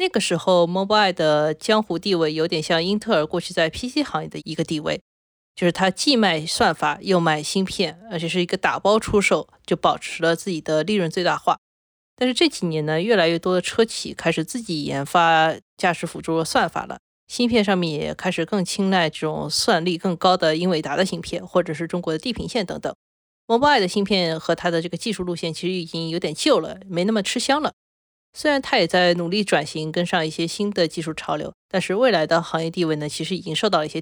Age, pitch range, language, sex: 20-39, 160-200 Hz, Chinese, female